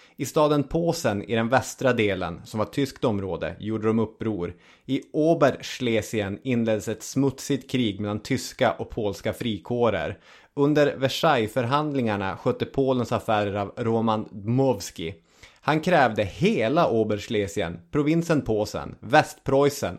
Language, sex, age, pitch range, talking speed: English, male, 20-39, 105-130 Hz, 120 wpm